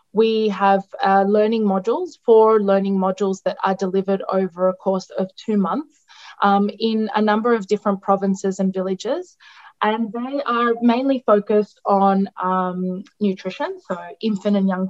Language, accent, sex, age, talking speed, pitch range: English, Australian, female, 20-39, 155 wpm, 190-210 Hz